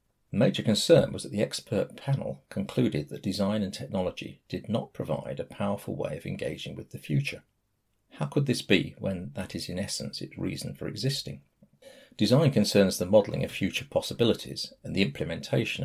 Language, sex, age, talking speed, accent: English, male, 40-59, 175 wpm, British